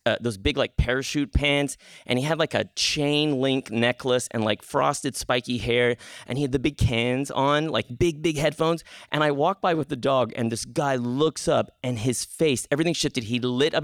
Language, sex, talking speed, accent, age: English, male, 215 wpm, American, 30-49